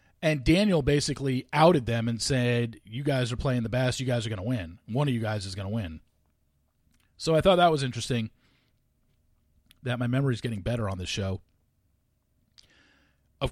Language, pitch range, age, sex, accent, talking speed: English, 115-190 Hz, 40-59, male, American, 190 wpm